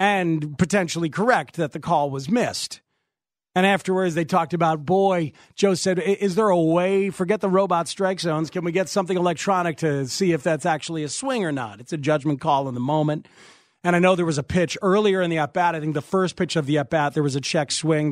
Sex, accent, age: male, American, 40-59